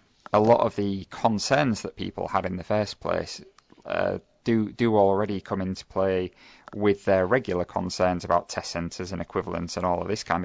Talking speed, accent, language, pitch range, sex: 190 wpm, British, English, 95-110 Hz, male